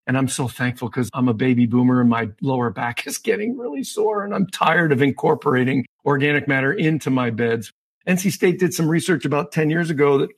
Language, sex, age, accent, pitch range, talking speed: English, male, 50-69, American, 130-180 Hz, 215 wpm